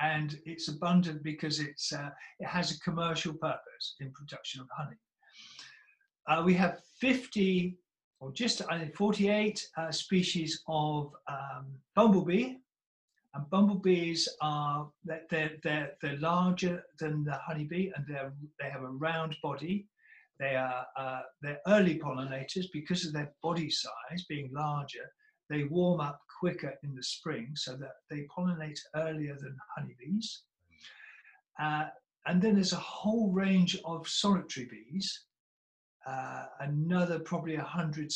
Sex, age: male, 50-69